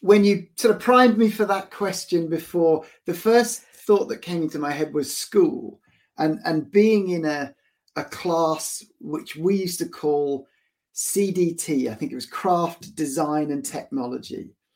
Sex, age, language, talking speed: male, 40-59, English, 165 wpm